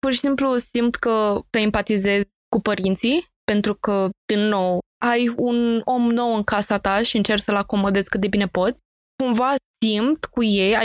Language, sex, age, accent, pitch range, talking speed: Romanian, female, 20-39, native, 195-235 Hz, 175 wpm